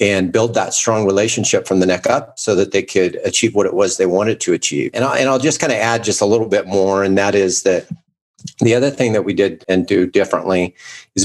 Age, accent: 40-59, American